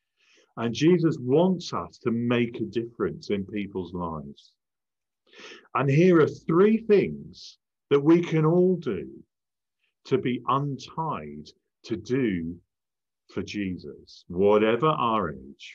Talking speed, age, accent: 120 wpm, 50-69, British